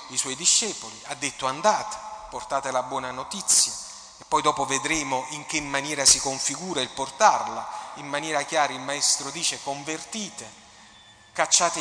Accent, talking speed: native, 145 wpm